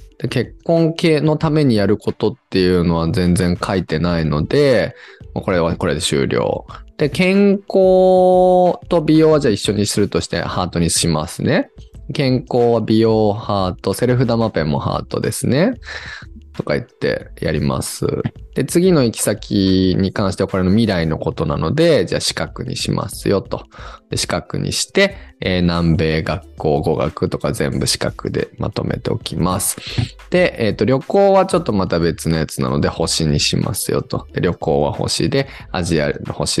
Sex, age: male, 20-39